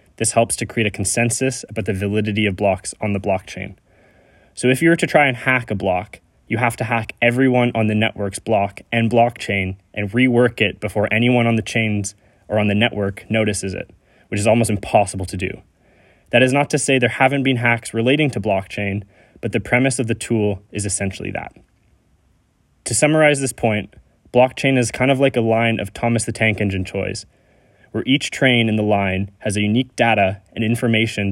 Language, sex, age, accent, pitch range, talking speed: English, male, 20-39, American, 100-120 Hz, 200 wpm